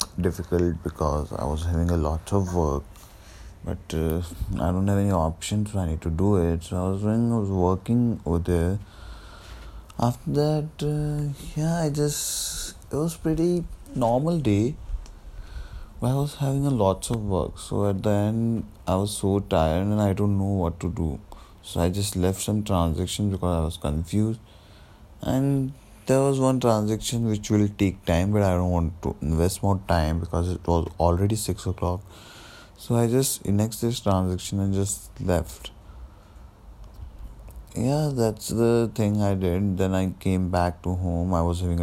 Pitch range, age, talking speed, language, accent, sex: 85-105 Hz, 20-39, 175 wpm, Hindi, native, male